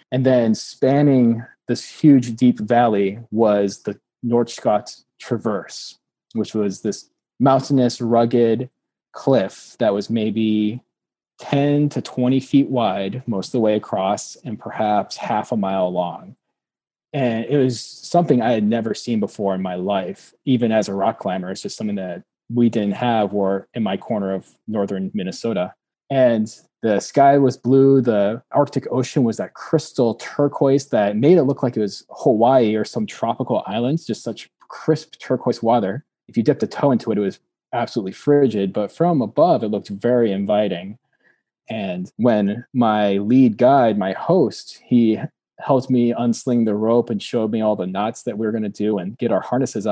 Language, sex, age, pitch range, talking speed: English, male, 20-39, 105-130 Hz, 170 wpm